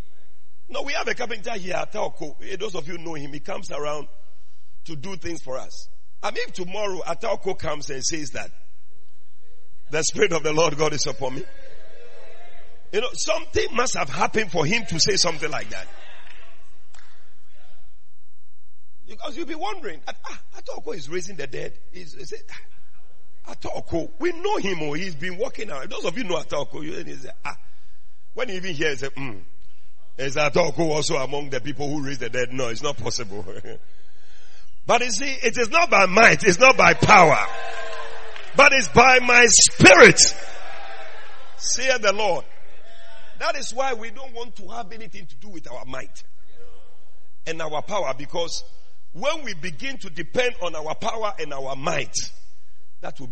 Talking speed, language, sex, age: 170 wpm, English, male, 50-69